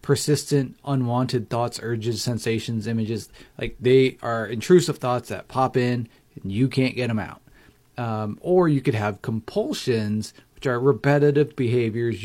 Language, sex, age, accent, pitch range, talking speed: English, male, 30-49, American, 115-140 Hz, 145 wpm